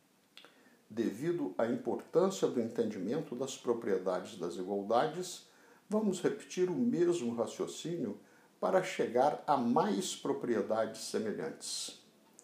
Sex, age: male, 60-79